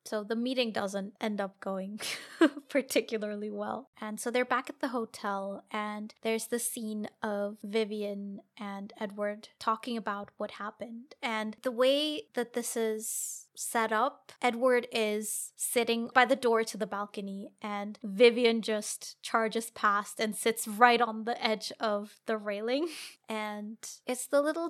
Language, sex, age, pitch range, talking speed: English, female, 20-39, 205-240 Hz, 155 wpm